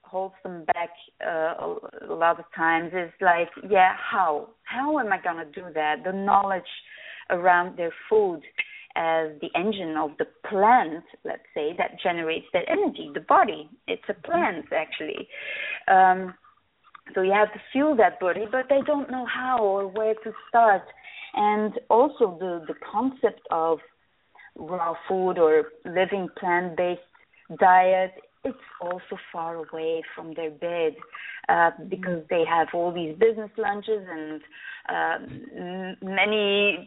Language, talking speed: English, 145 wpm